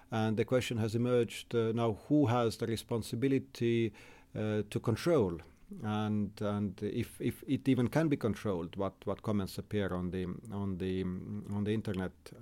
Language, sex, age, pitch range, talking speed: English, male, 50-69, 105-125 Hz, 165 wpm